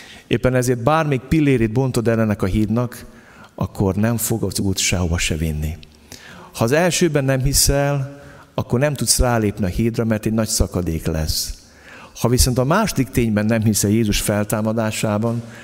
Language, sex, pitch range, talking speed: Hungarian, male, 95-120 Hz, 155 wpm